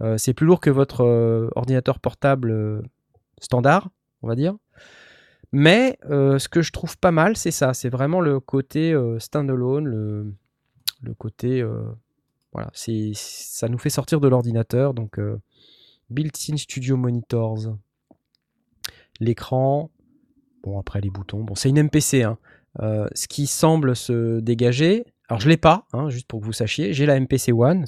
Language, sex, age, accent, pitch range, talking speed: French, male, 20-39, French, 115-160 Hz, 170 wpm